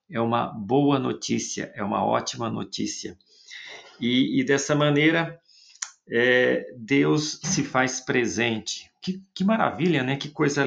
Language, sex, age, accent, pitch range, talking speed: Portuguese, male, 50-69, Brazilian, 120-170 Hz, 125 wpm